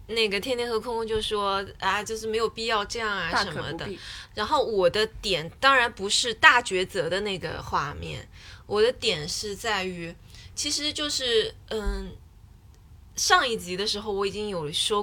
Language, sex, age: Chinese, female, 20-39